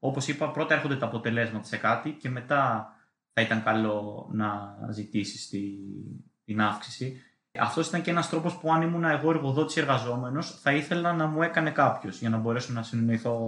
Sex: male